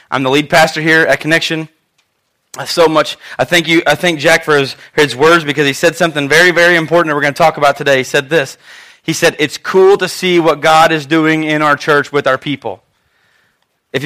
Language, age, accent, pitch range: English, 30-49, American, 155-190 Hz